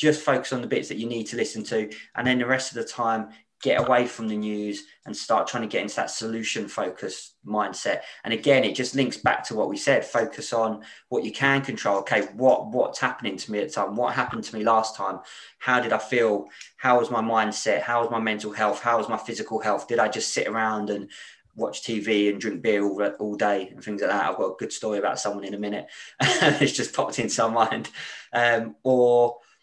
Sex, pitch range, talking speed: male, 105-120 Hz, 240 wpm